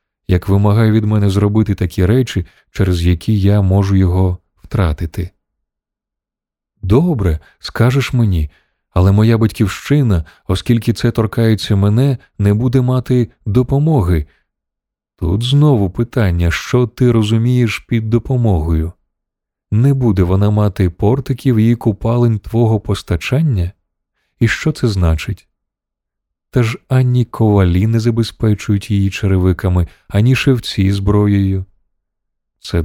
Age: 20-39